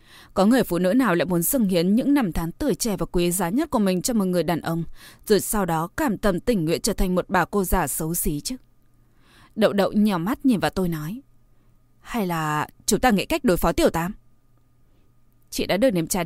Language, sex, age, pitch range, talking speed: Vietnamese, female, 20-39, 165-220 Hz, 235 wpm